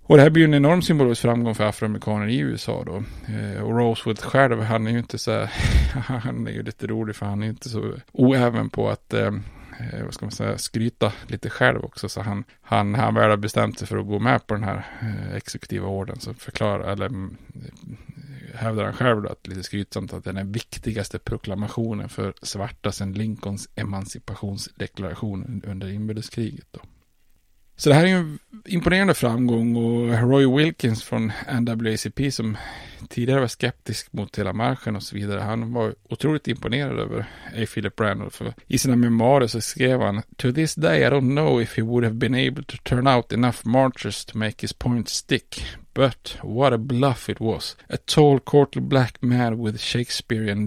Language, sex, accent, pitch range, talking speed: Swedish, male, Norwegian, 105-125 Hz, 185 wpm